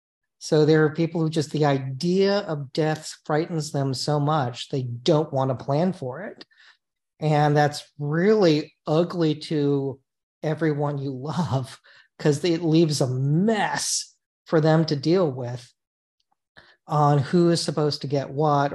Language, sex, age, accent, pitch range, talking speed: English, male, 40-59, American, 135-165 Hz, 145 wpm